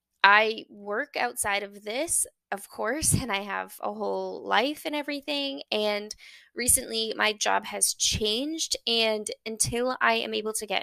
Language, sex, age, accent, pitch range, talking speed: English, female, 10-29, American, 195-240 Hz, 155 wpm